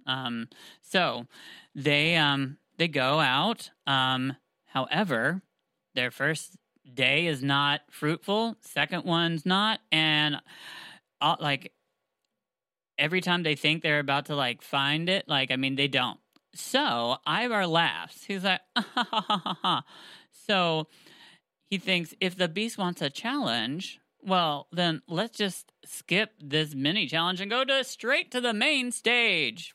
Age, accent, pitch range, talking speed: 40-59, American, 140-190 Hz, 130 wpm